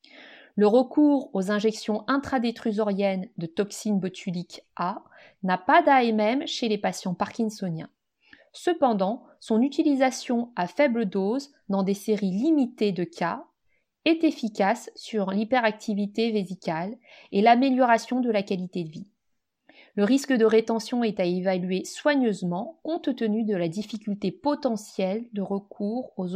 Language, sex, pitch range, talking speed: French, female, 195-270 Hz, 130 wpm